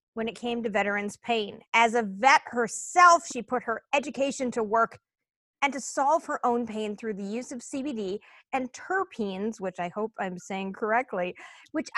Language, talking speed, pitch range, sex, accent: English, 180 wpm, 225-280 Hz, female, American